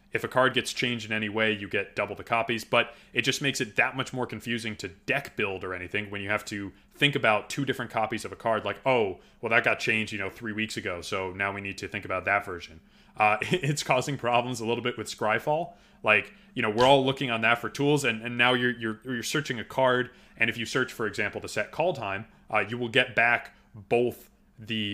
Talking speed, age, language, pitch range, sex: 250 wpm, 20-39, English, 105-140 Hz, male